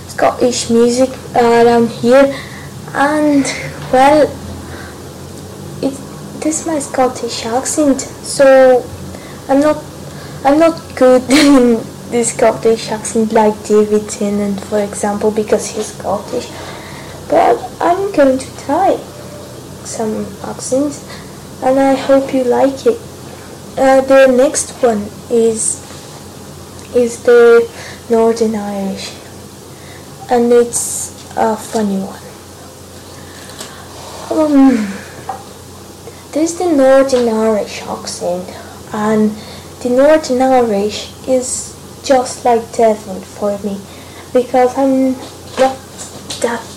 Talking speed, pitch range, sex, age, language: 100 wpm, 225-265 Hz, female, 20-39, English